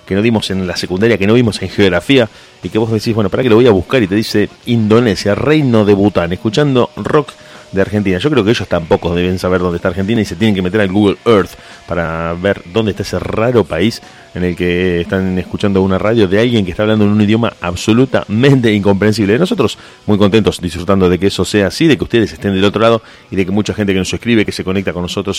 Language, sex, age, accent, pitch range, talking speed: Spanish, male, 30-49, Argentinian, 95-110 Hz, 245 wpm